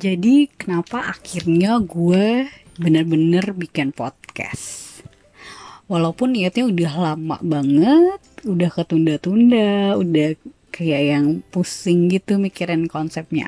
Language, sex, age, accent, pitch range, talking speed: Indonesian, female, 20-39, native, 155-200 Hz, 95 wpm